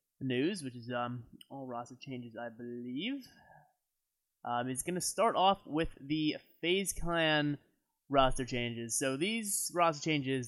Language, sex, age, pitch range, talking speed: English, male, 20-39, 120-150 Hz, 145 wpm